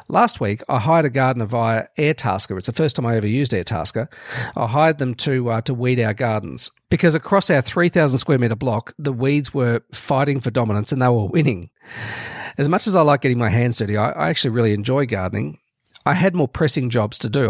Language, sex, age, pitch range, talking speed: English, male, 40-59, 115-150 Hz, 220 wpm